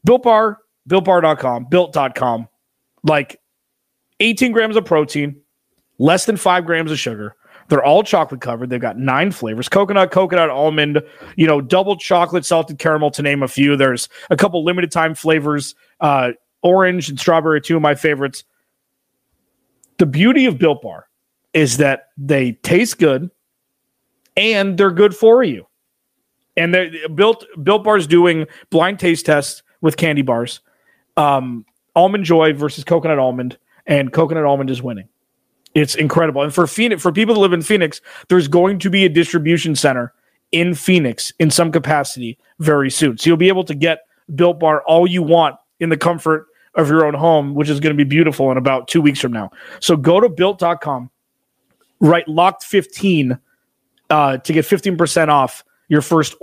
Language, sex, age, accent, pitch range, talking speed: English, male, 30-49, American, 140-180 Hz, 170 wpm